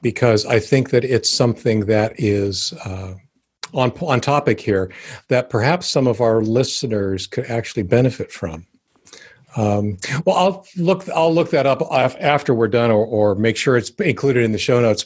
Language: English